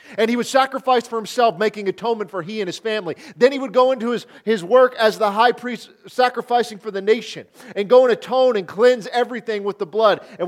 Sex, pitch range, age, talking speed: male, 220-275 Hz, 40-59, 230 wpm